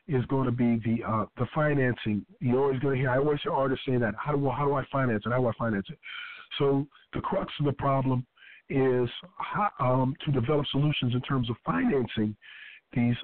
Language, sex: English, male